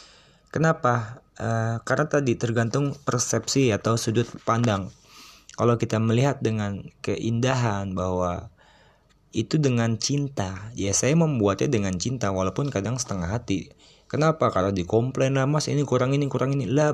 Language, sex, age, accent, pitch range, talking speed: Indonesian, male, 20-39, native, 95-135 Hz, 135 wpm